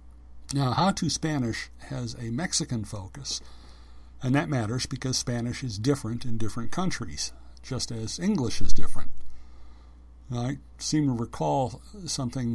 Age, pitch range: 60-79, 90-130 Hz